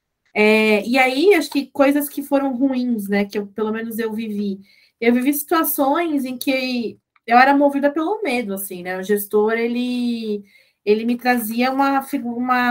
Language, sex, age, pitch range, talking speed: Portuguese, female, 20-39, 210-255 Hz, 160 wpm